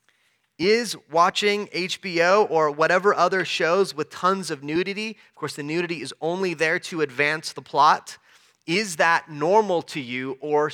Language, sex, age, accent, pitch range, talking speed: English, male, 30-49, American, 150-195 Hz, 155 wpm